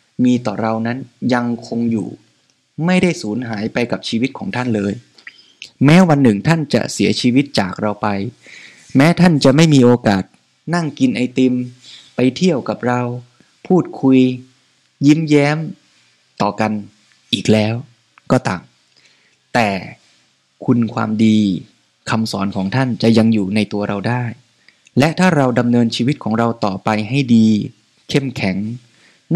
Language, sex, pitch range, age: Thai, male, 105-135 Hz, 20-39